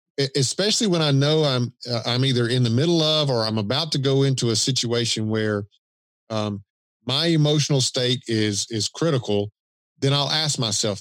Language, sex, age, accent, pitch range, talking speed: English, male, 50-69, American, 110-140 Hz, 175 wpm